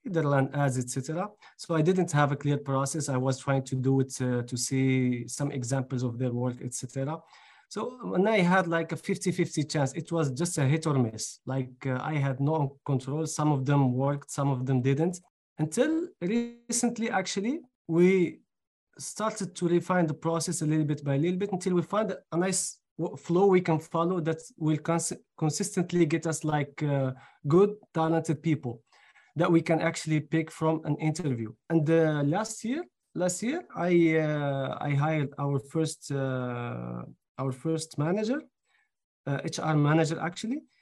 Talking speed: 175 wpm